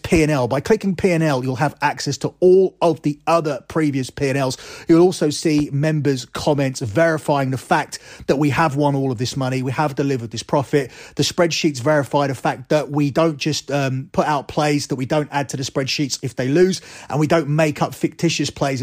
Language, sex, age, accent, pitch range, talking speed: English, male, 30-49, British, 140-165 Hz, 205 wpm